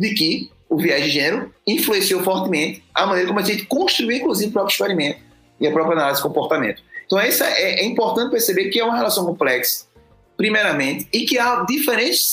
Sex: male